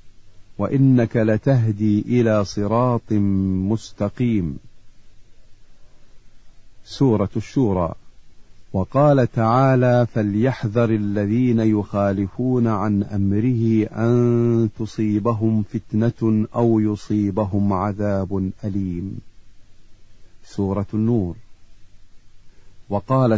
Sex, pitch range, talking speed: male, 100-115 Hz, 60 wpm